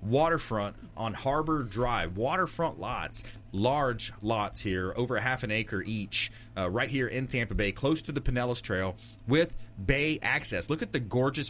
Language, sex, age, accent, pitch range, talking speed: English, male, 30-49, American, 105-130 Hz, 165 wpm